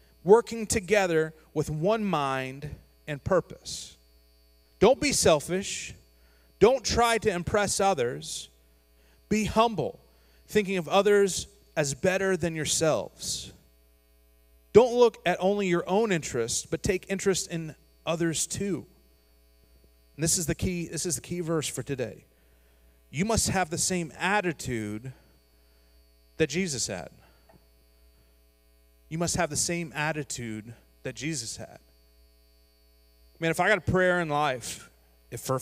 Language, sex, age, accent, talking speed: English, male, 30-49, American, 130 wpm